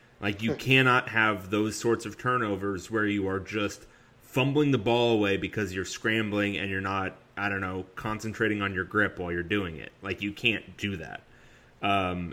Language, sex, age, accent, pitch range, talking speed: English, male, 30-49, American, 100-125 Hz, 190 wpm